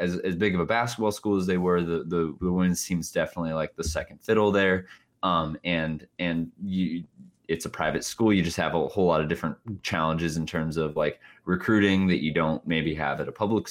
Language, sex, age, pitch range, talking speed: English, male, 20-39, 80-95 Hz, 225 wpm